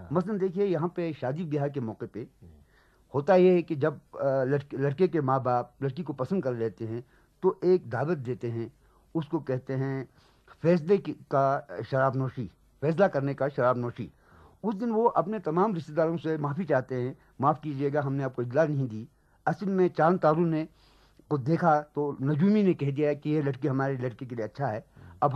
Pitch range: 135-180 Hz